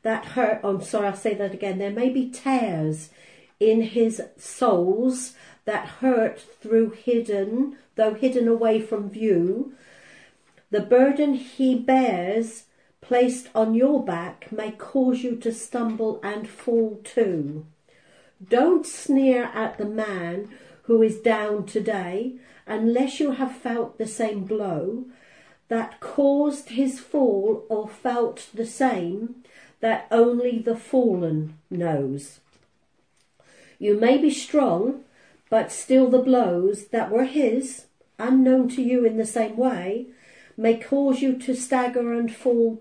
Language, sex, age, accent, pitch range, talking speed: English, female, 50-69, British, 210-255 Hz, 130 wpm